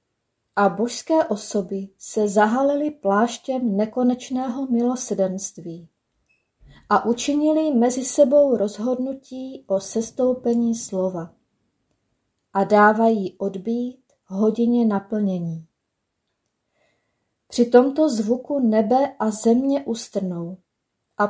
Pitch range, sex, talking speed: 205-255 Hz, female, 80 wpm